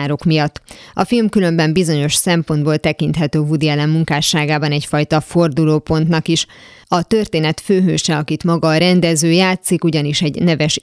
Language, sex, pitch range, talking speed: Hungarian, female, 155-180 Hz, 135 wpm